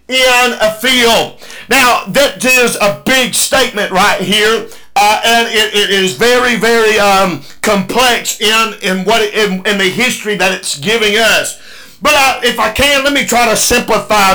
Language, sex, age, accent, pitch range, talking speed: English, male, 50-69, American, 210-260 Hz, 170 wpm